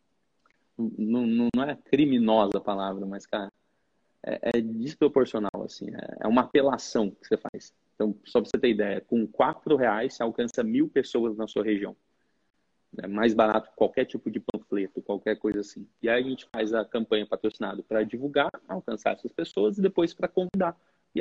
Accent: Brazilian